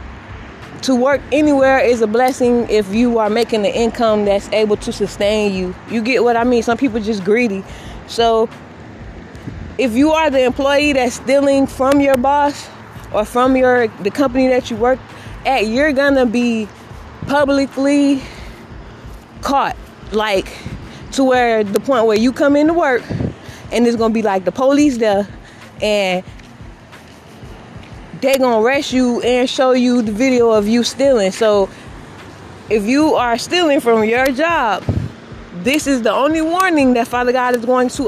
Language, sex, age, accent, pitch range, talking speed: English, female, 20-39, American, 225-270 Hz, 160 wpm